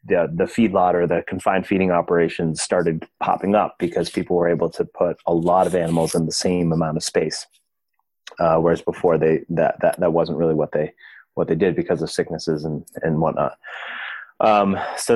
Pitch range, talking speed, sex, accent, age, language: 85-105 Hz, 195 wpm, male, American, 30-49, English